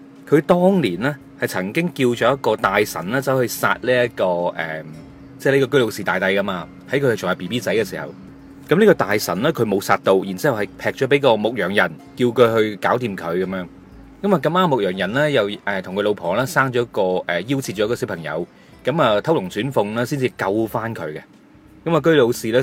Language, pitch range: Chinese, 100-145 Hz